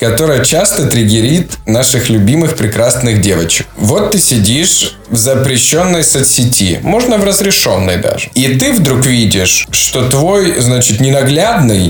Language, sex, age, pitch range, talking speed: Russian, male, 20-39, 105-135 Hz, 125 wpm